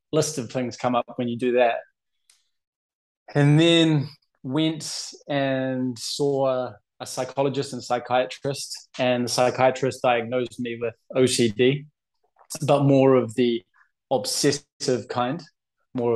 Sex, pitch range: male, 115-140 Hz